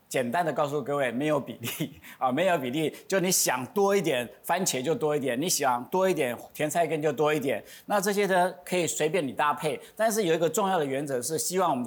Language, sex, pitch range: Chinese, male, 130-175 Hz